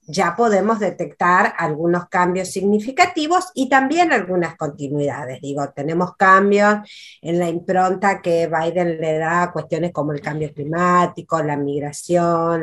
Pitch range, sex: 160-200 Hz, female